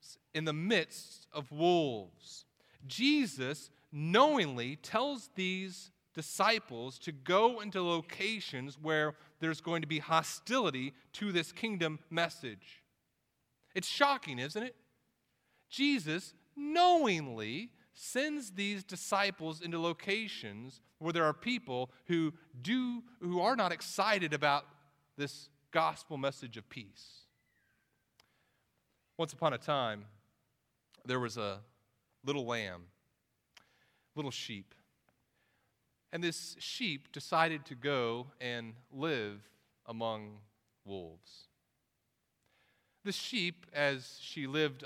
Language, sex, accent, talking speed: English, male, American, 105 wpm